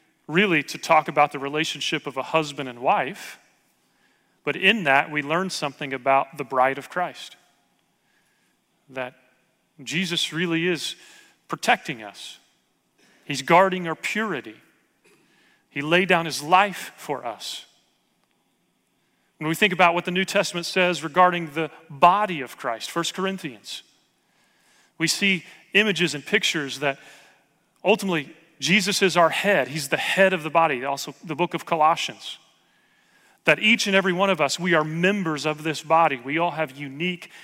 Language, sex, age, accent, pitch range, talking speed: English, male, 40-59, American, 145-180 Hz, 150 wpm